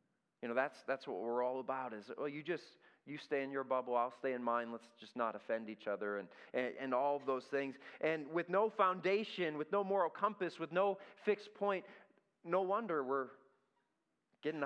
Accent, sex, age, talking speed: American, male, 30-49, 205 wpm